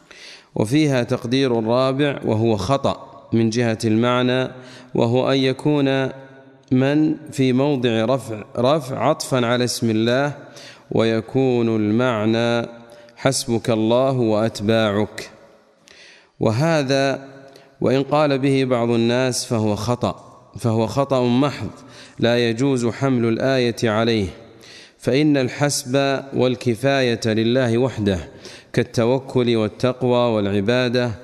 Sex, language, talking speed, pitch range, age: male, Arabic, 95 wpm, 115-140 Hz, 40-59